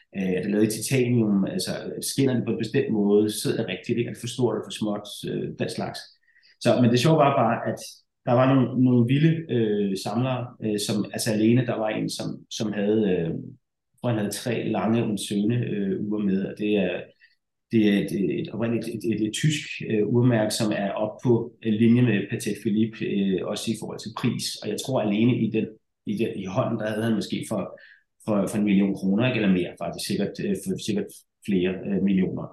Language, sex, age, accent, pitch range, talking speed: Danish, male, 30-49, native, 105-125 Hz, 220 wpm